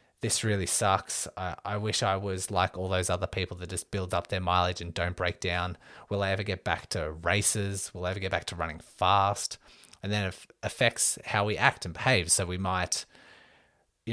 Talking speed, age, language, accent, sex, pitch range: 215 wpm, 20-39, English, Australian, male, 90-105 Hz